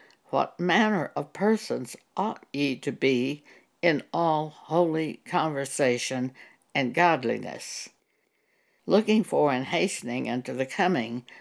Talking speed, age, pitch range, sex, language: 110 wpm, 60-79, 140-195 Hz, female, English